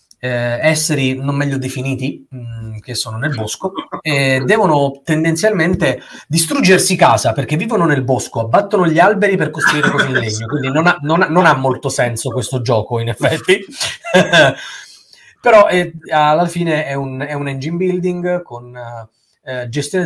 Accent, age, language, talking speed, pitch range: native, 30-49, Italian, 160 wpm, 125-165 Hz